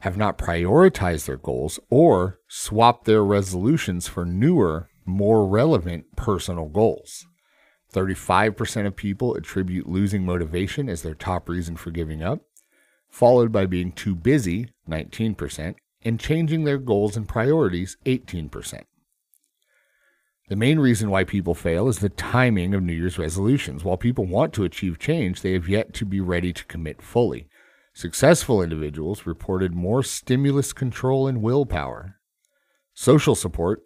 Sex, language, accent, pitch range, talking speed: male, English, American, 90-125 Hz, 140 wpm